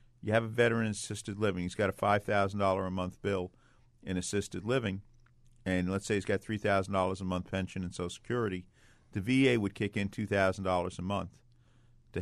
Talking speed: 185 wpm